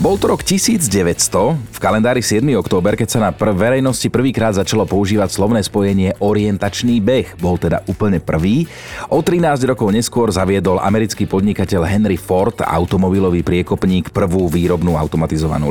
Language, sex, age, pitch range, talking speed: Slovak, male, 30-49, 95-120 Hz, 145 wpm